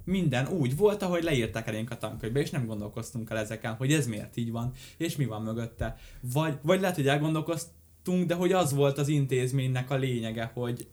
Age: 10-29